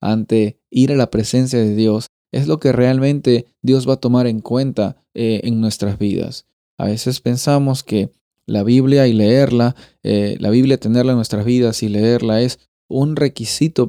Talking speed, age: 175 wpm, 20-39